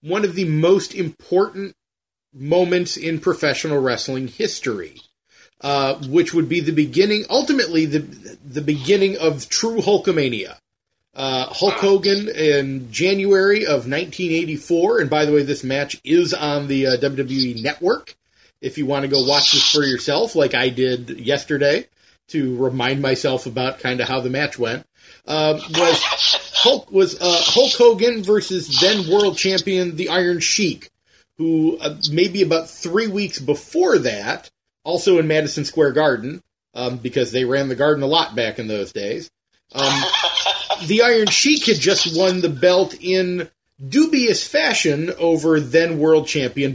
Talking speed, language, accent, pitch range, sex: 155 wpm, English, American, 135-185 Hz, male